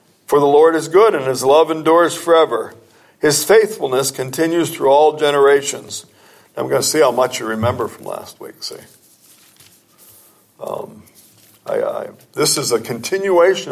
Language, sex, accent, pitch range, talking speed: English, male, American, 140-180 Hz, 145 wpm